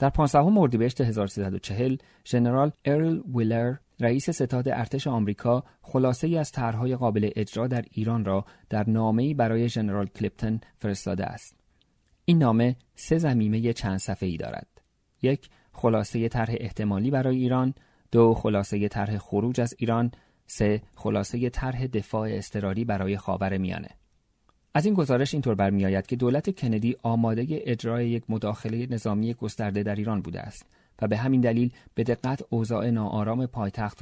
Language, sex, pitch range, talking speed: Persian, male, 105-125 Hz, 150 wpm